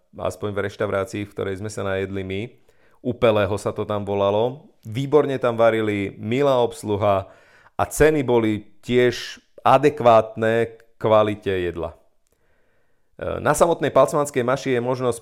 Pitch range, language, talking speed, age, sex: 105-125 Hz, Slovak, 135 wpm, 30-49, male